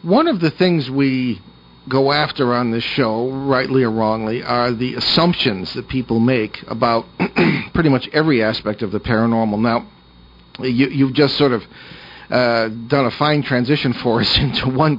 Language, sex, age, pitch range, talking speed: English, male, 50-69, 120-145 Hz, 170 wpm